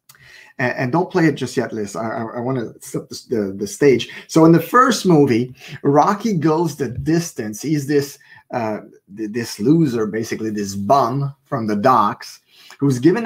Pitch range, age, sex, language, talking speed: 120-160 Hz, 30-49, male, English, 170 wpm